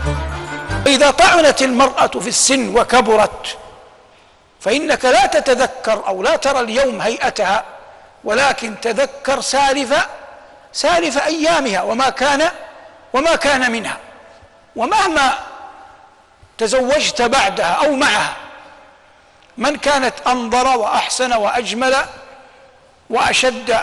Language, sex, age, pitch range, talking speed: Arabic, male, 60-79, 225-280 Hz, 90 wpm